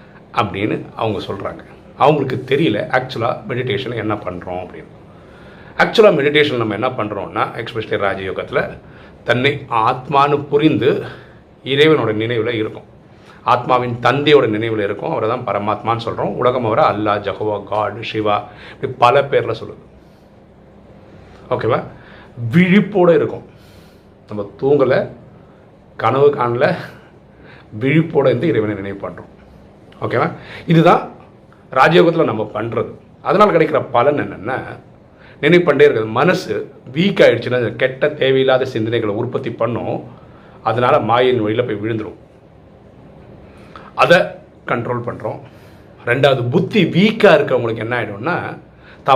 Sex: male